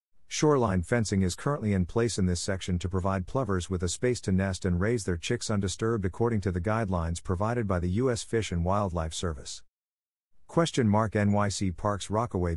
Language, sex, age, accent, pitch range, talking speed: English, male, 50-69, American, 90-110 Hz, 185 wpm